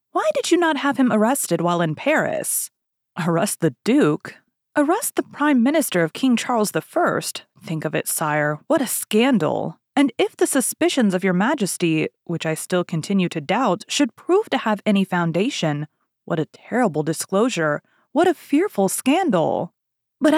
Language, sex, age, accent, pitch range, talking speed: English, female, 20-39, American, 170-265 Hz, 165 wpm